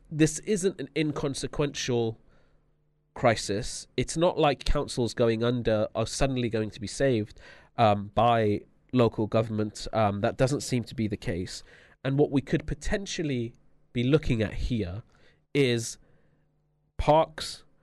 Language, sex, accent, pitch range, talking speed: English, male, British, 115-150 Hz, 130 wpm